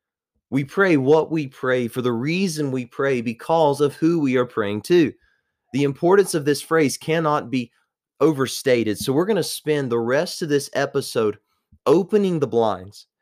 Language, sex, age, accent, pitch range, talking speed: English, male, 30-49, American, 120-160 Hz, 170 wpm